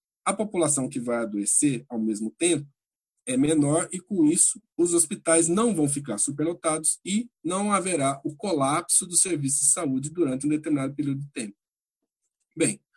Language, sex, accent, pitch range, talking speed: Portuguese, male, Brazilian, 135-170 Hz, 160 wpm